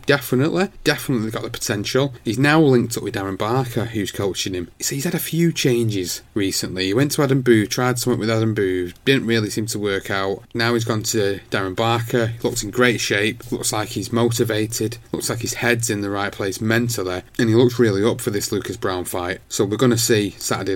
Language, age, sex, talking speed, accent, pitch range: English, 30-49, male, 225 wpm, British, 100-120 Hz